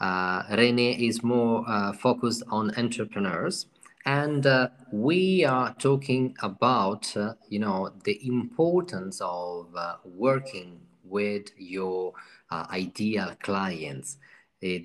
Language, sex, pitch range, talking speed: English, male, 95-125 Hz, 115 wpm